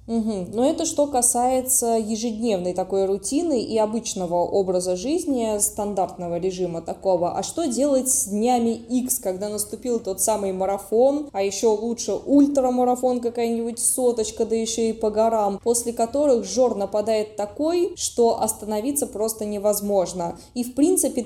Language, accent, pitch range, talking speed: Russian, native, 200-250 Hz, 135 wpm